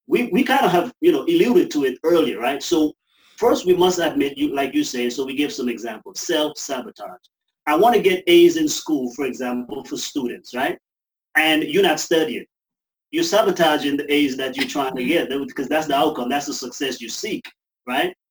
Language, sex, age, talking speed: English, male, 30-49, 205 wpm